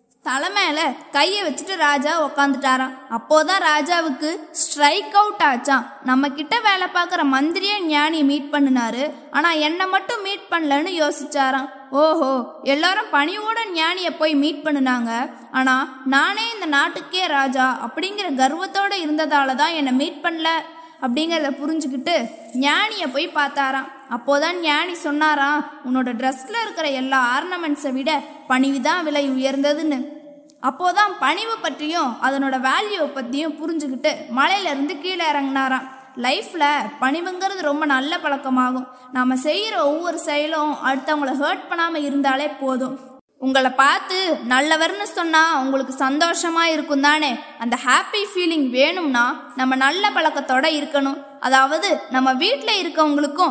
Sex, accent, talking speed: female, native, 115 wpm